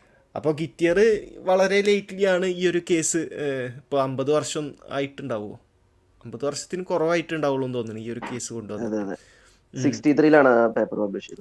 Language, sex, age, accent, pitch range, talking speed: Malayalam, male, 20-39, native, 130-165 Hz, 100 wpm